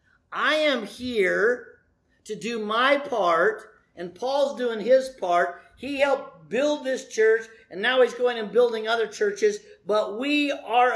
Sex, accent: male, American